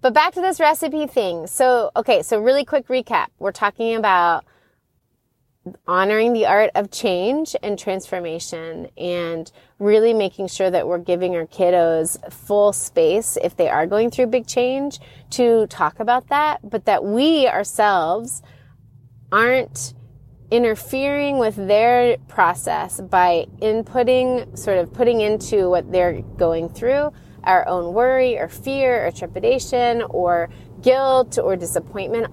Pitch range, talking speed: 175-250 Hz, 135 wpm